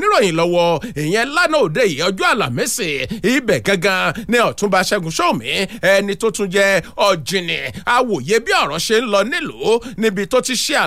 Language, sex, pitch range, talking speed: English, male, 195-285 Hz, 170 wpm